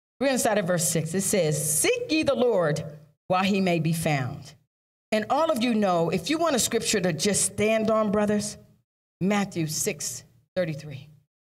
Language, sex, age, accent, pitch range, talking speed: English, female, 40-59, American, 155-220 Hz, 175 wpm